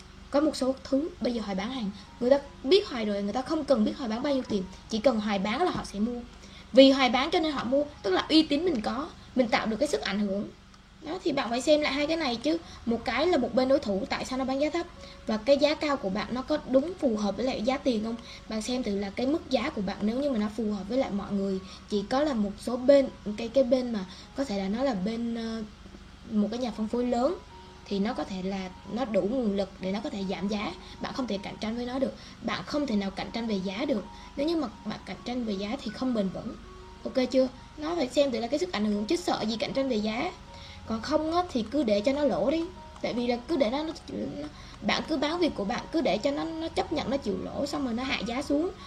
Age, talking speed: 20-39, 285 wpm